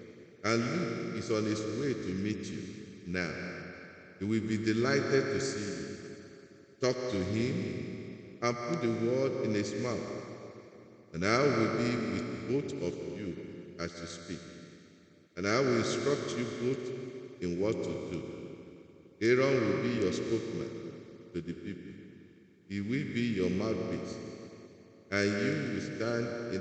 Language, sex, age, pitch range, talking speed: English, male, 50-69, 90-120 Hz, 150 wpm